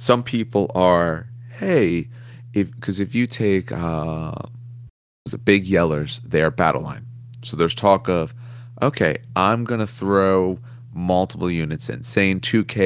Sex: male